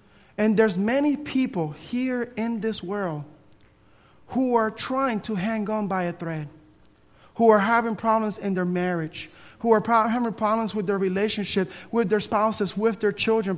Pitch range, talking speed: 205-260 Hz, 165 wpm